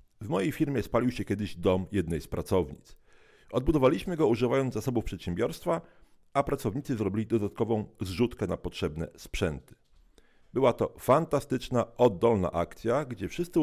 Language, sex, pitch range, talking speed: Polish, male, 90-130 Hz, 130 wpm